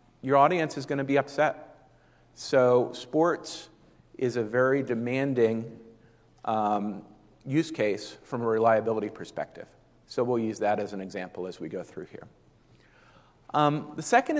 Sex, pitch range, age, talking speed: male, 110-140 Hz, 40-59, 145 wpm